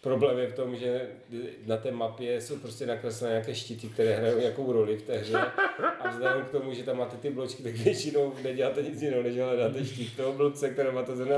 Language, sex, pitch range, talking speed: Czech, male, 115-135 Hz, 230 wpm